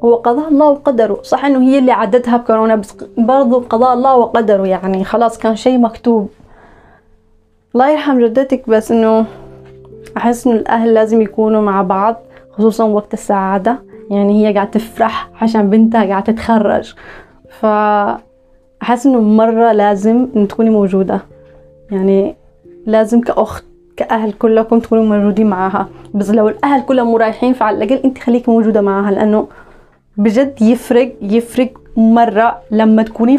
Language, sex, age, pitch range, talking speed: Arabic, female, 20-39, 215-250 Hz, 135 wpm